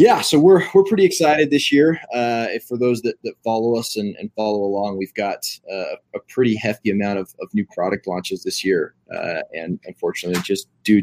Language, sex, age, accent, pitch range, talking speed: English, male, 20-39, American, 100-120 Hz, 210 wpm